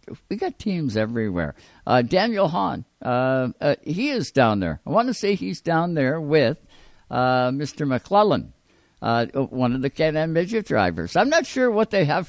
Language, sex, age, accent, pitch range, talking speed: English, male, 60-79, American, 135-190 Hz, 180 wpm